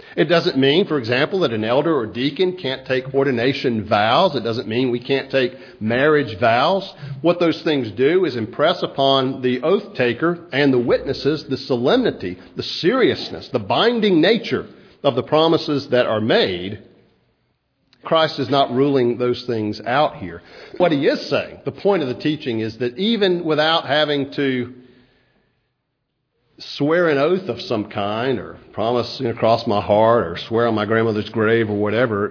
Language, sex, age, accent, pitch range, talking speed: English, male, 50-69, American, 115-155 Hz, 170 wpm